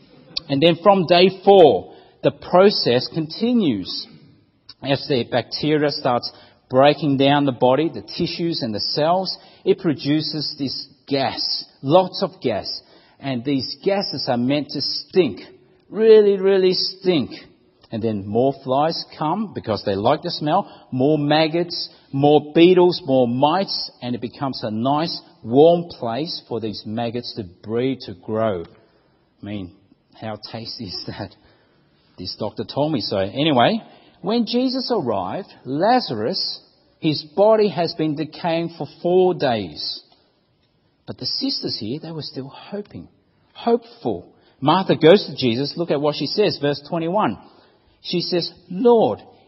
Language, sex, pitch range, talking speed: English, male, 135-185 Hz, 140 wpm